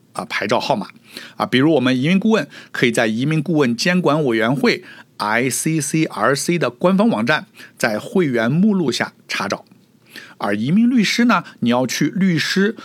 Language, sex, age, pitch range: Chinese, male, 60-79, 115-190 Hz